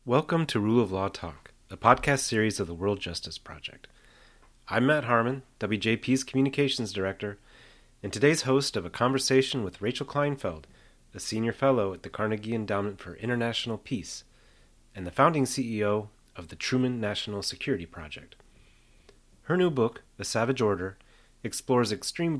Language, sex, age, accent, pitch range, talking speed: English, male, 30-49, American, 90-120 Hz, 155 wpm